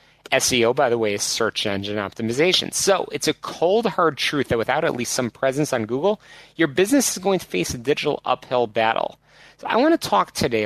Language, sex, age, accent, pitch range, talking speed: English, male, 30-49, American, 115-155 Hz, 215 wpm